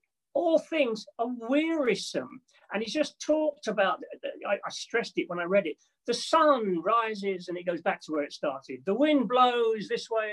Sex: male